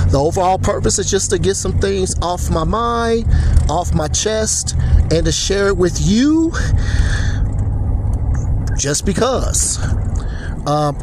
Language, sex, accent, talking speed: English, male, American, 130 wpm